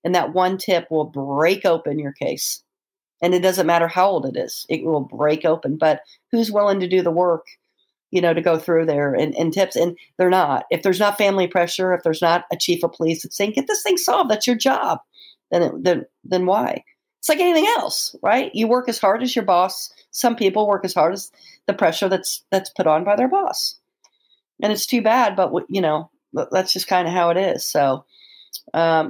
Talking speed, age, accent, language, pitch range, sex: 225 wpm, 50-69, American, English, 165-210 Hz, female